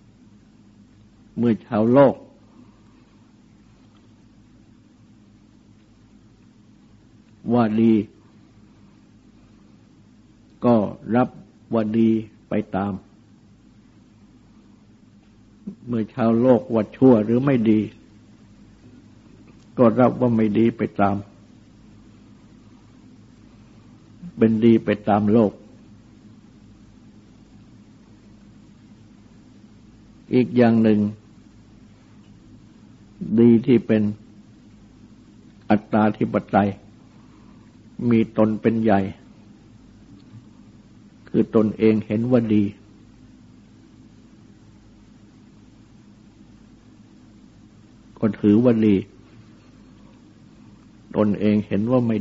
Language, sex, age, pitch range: Thai, male, 60-79, 105-115 Hz